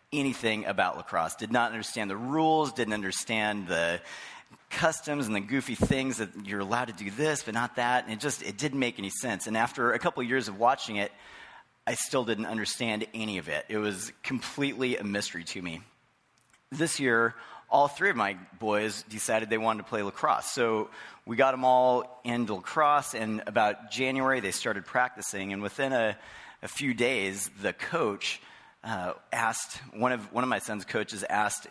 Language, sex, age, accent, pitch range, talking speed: English, male, 30-49, American, 105-130 Hz, 185 wpm